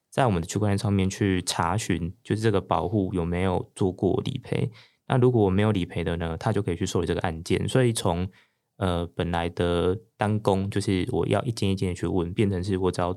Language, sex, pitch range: Chinese, male, 90-110 Hz